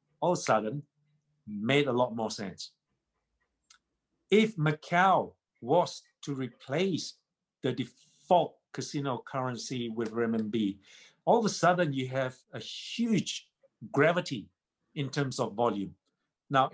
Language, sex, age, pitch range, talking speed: English, male, 50-69, 125-155 Hz, 120 wpm